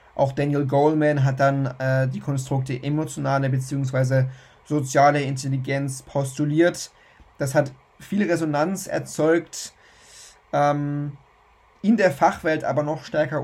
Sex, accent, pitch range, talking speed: male, German, 135-160 Hz, 110 wpm